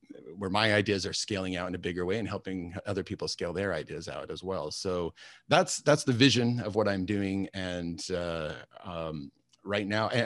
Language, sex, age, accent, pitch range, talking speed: English, male, 30-49, American, 95-120 Hz, 205 wpm